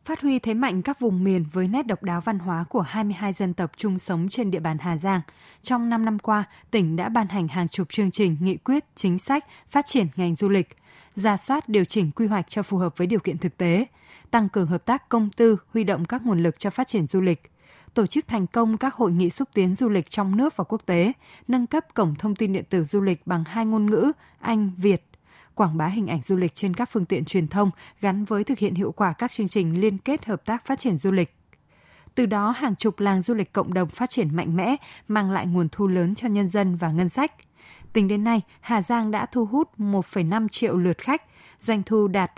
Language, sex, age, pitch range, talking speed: Vietnamese, female, 20-39, 180-225 Hz, 245 wpm